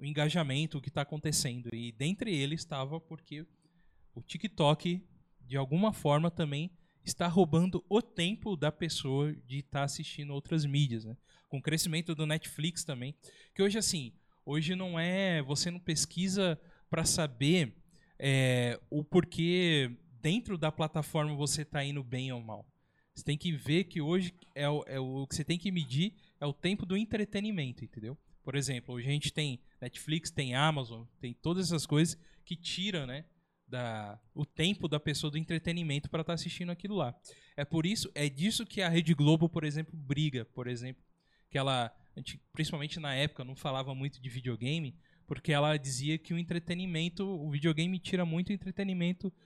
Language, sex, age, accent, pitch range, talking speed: Portuguese, male, 20-39, Brazilian, 135-175 Hz, 175 wpm